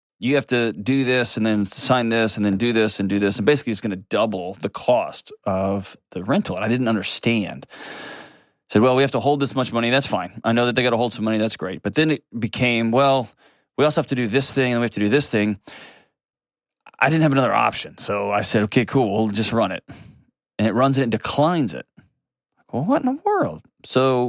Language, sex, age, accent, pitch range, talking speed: English, male, 30-49, American, 105-135 Hz, 245 wpm